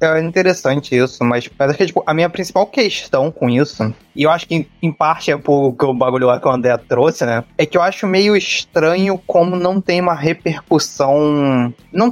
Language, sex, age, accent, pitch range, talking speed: Portuguese, male, 20-39, Brazilian, 130-180 Hz, 220 wpm